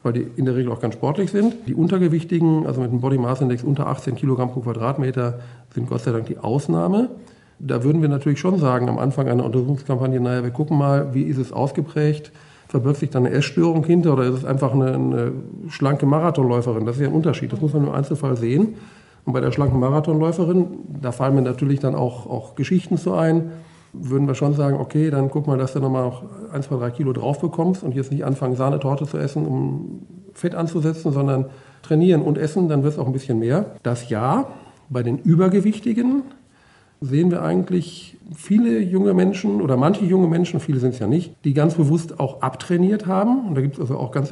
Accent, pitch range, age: German, 130-170 Hz, 50-69